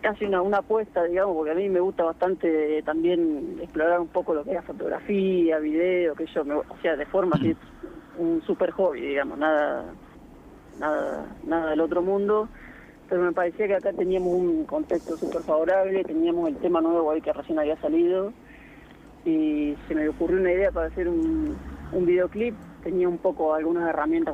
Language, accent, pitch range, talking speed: Spanish, Argentinian, 165-215 Hz, 180 wpm